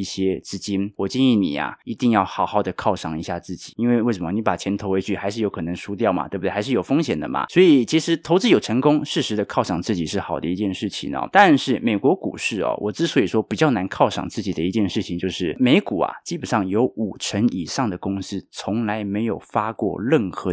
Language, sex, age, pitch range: Chinese, male, 20-39, 100-165 Hz